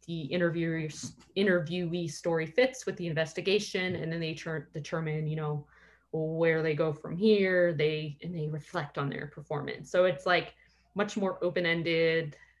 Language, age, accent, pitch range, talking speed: English, 20-39, American, 155-175 Hz, 155 wpm